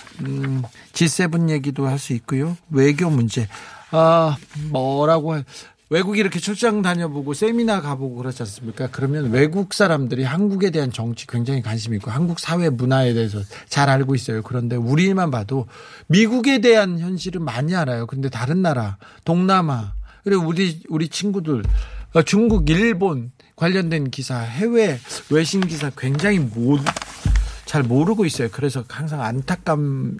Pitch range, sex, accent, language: 130-170 Hz, male, native, Korean